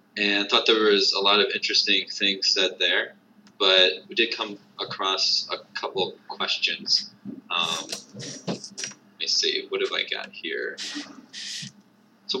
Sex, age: male, 20-39